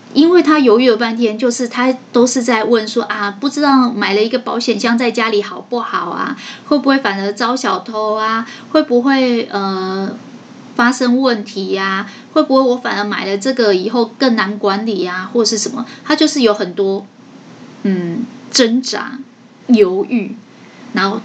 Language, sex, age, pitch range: Chinese, female, 20-39, 210-255 Hz